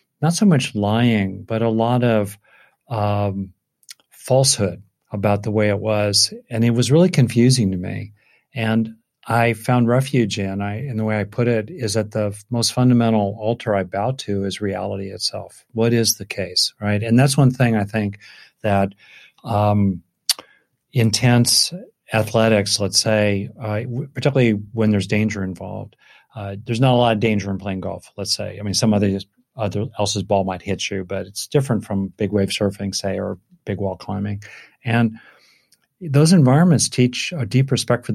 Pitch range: 100-125 Hz